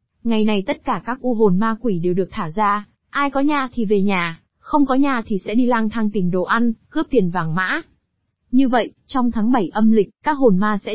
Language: Vietnamese